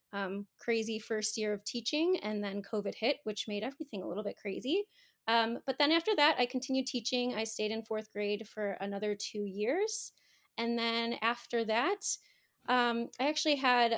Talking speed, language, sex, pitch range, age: 180 wpm, English, female, 210-255 Hz, 20-39